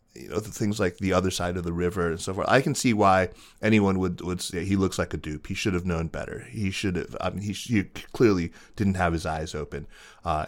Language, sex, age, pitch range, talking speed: English, male, 30-49, 90-105 Hz, 265 wpm